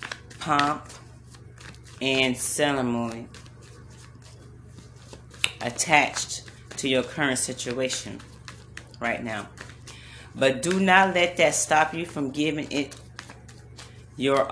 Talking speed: 85 wpm